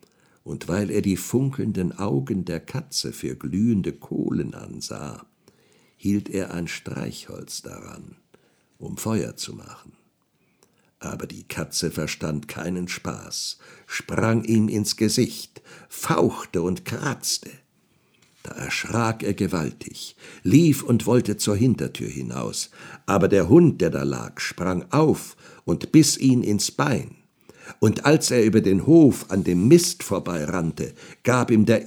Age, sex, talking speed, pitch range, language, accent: 60-79, male, 130 wpm, 95-155 Hz, German, German